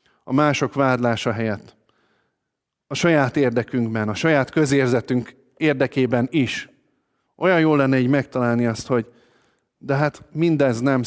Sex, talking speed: male, 125 wpm